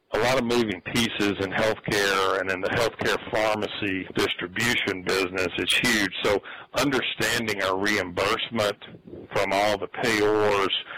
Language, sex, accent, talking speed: English, male, American, 130 wpm